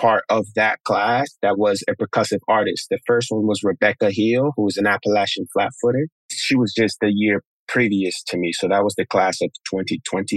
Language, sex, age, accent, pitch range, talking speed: English, male, 20-39, American, 105-120 Hz, 210 wpm